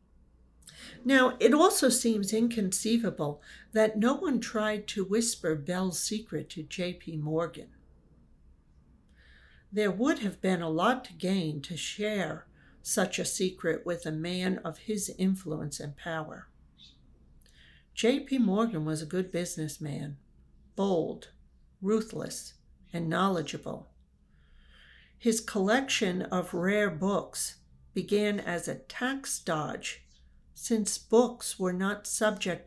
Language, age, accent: English, 60-79, American